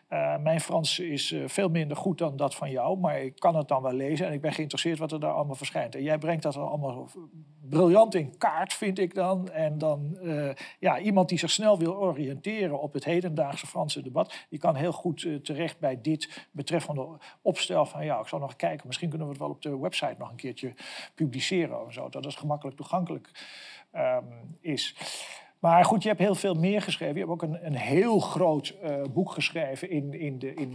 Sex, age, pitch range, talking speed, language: male, 50-69, 140-175 Hz, 210 wpm, Dutch